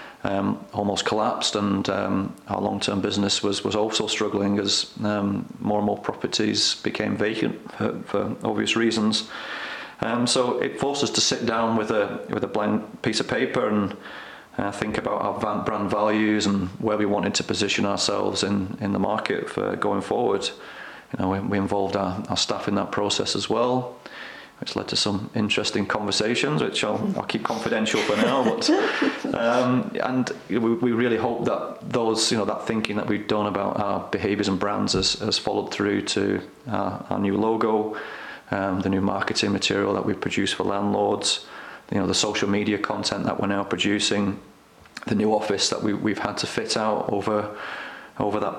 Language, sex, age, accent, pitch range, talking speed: English, male, 30-49, British, 100-110 Hz, 185 wpm